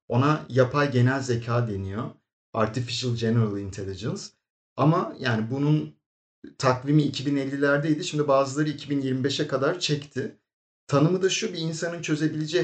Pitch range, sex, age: 115-150 Hz, male, 40-59